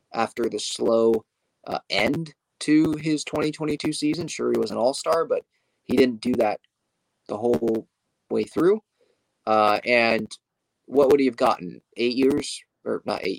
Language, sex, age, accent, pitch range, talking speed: English, male, 20-39, American, 115-145 Hz, 155 wpm